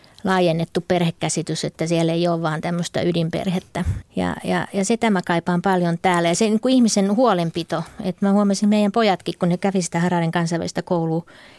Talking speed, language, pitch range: 185 wpm, Finnish, 170-195 Hz